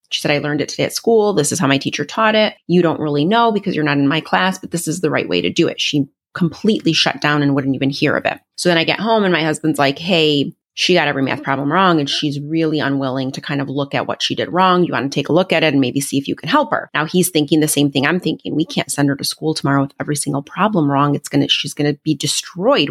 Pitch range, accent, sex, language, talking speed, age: 145-180 Hz, American, female, English, 305 wpm, 30-49